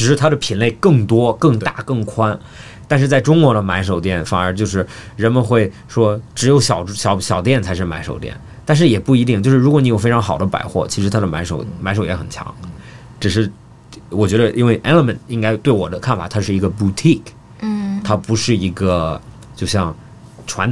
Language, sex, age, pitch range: Chinese, male, 20-39, 95-130 Hz